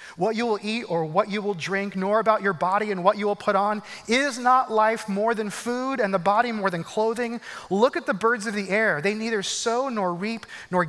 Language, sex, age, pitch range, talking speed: English, male, 30-49, 180-230 Hz, 240 wpm